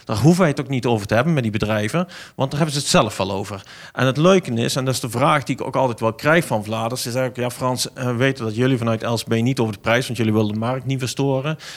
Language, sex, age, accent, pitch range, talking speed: Dutch, male, 40-59, Dutch, 120-150 Hz, 295 wpm